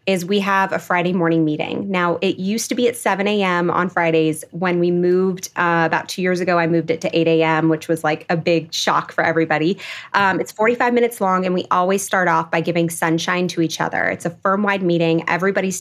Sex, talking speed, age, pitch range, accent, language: female, 230 wpm, 20-39, 170-200 Hz, American, English